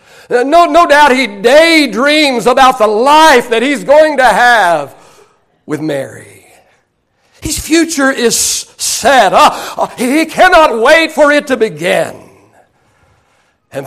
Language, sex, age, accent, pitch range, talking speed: English, male, 60-79, American, 185-315 Hz, 115 wpm